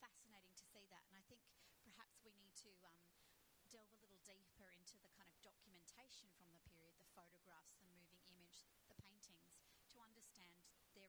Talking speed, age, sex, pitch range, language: 185 wpm, 30-49, female, 180-220 Hz, English